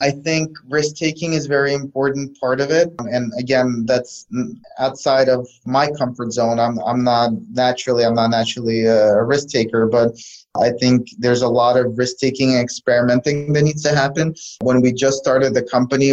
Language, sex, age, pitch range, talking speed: English, male, 20-39, 120-135 Hz, 185 wpm